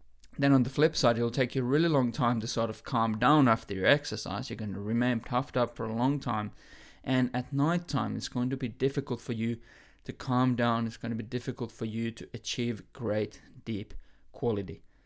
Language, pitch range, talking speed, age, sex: English, 115-140 Hz, 225 wpm, 20-39, male